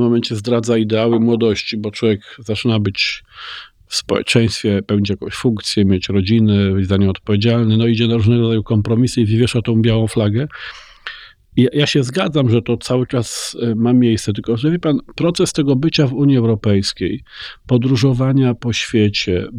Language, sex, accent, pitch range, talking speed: Polish, male, native, 115-140 Hz, 160 wpm